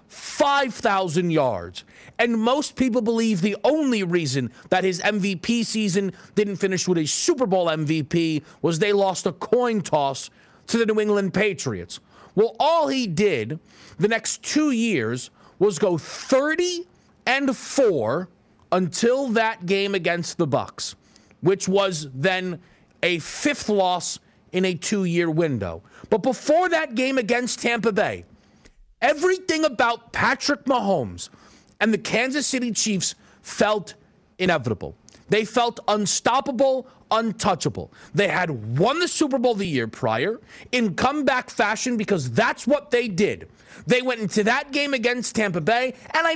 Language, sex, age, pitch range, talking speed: English, male, 40-59, 175-250 Hz, 140 wpm